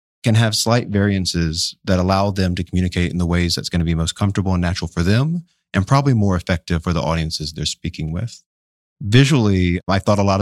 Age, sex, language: 30-49, male, English